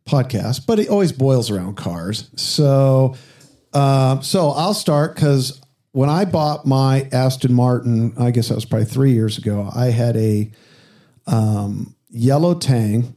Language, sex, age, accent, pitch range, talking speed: English, male, 50-69, American, 120-150 Hz, 150 wpm